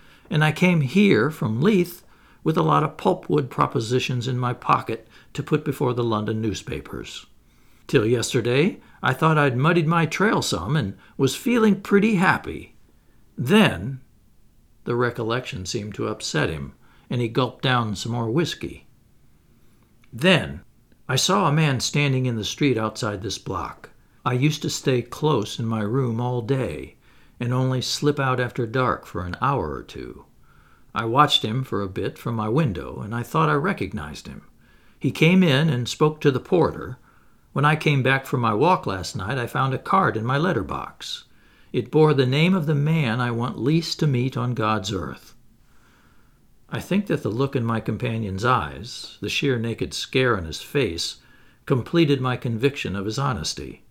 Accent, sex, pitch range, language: American, male, 115-155 Hz, English